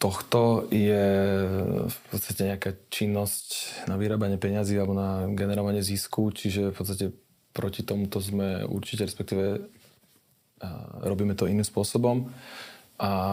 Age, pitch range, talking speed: 20-39, 95-105 Hz, 115 wpm